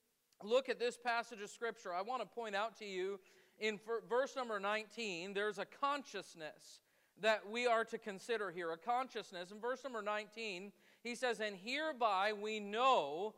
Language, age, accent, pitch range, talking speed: English, 40-59, American, 205-255 Hz, 170 wpm